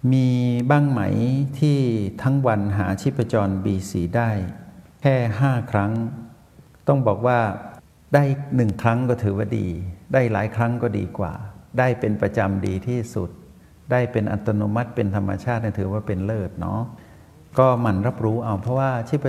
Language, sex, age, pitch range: Thai, male, 60-79, 95-125 Hz